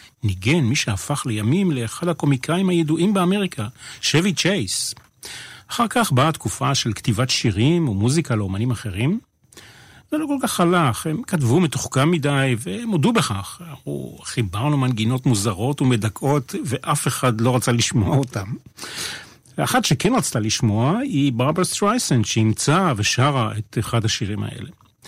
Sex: male